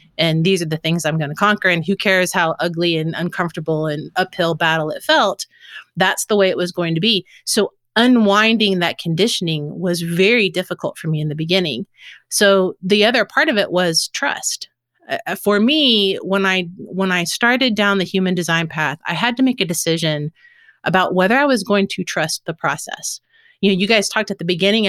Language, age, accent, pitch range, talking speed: English, 30-49, American, 175-220 Hz, 205 wpm